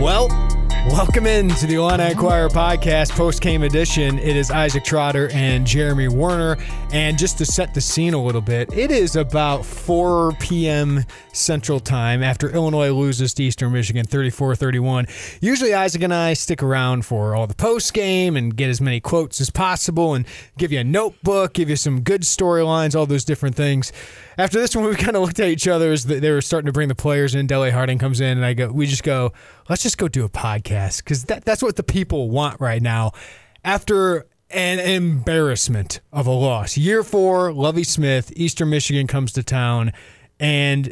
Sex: male